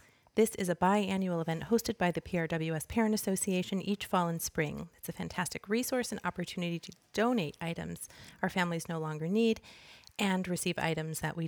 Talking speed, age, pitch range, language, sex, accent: 180 wpm, 30-49, 170-210 Hz, English, female, American